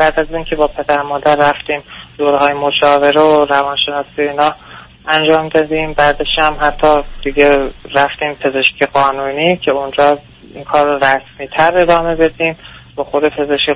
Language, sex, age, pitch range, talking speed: Persian, male, 20-39, 140-155 Hz, 135 wpm